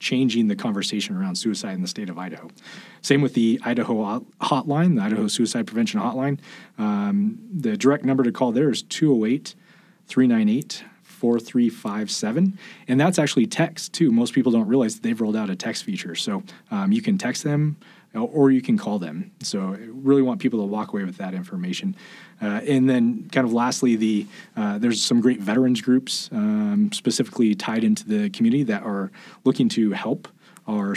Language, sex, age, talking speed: English, male, 30-49, 180 wpm